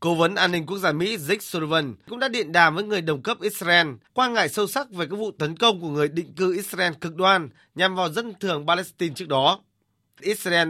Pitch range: 150-210 Hz